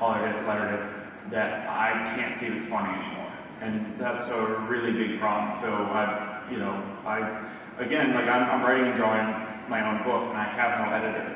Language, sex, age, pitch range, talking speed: English, male, 20-39, 105-120 Hz, 180 wpm